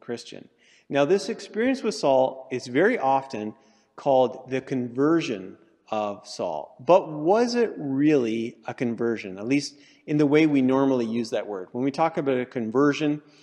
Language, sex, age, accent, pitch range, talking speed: English, male, 40-59, American, 120-150 Hz, 160 wpm